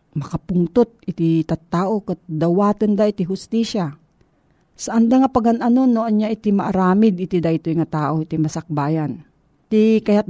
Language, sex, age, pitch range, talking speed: Filipino, female, 40-59, 165-215 Hz, 135 wpm